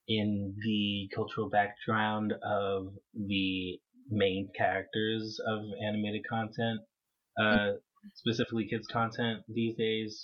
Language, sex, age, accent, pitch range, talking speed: English, male, 20-39, American, 100-115 Hz, 100 wpm